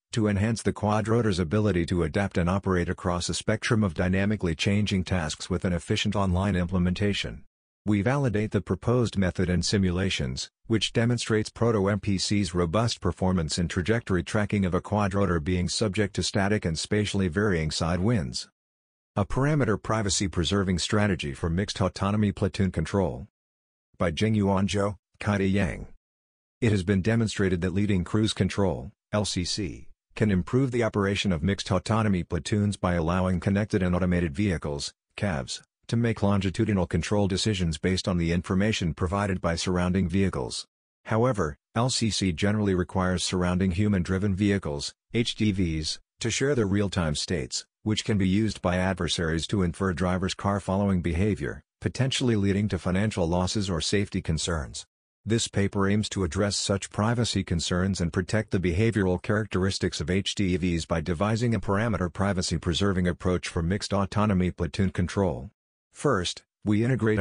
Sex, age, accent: male, 50-69, American